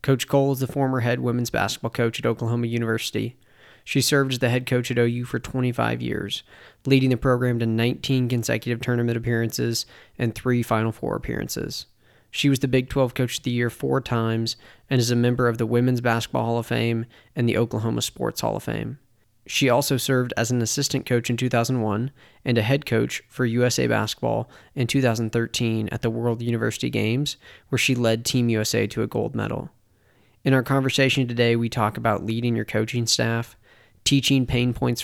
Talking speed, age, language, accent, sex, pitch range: 190 wpm, 20-39, English, American, male, 115-125 Hz